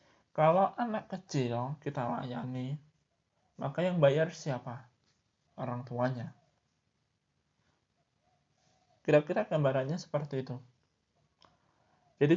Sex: male